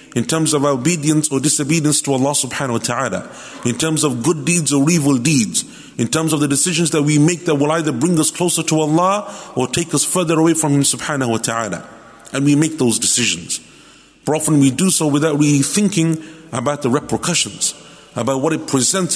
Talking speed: 205 wpm